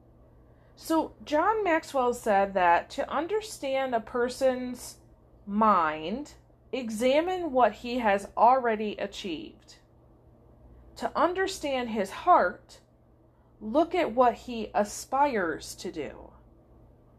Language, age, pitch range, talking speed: English, 40-59, 195-255 Hz, 95 wpm